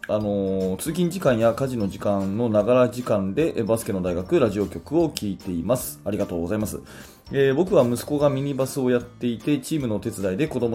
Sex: male